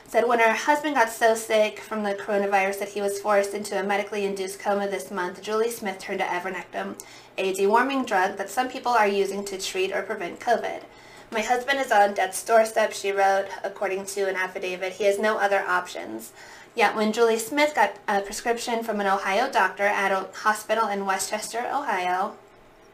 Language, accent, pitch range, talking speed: English, American, 195-225 Hz, 195 wpm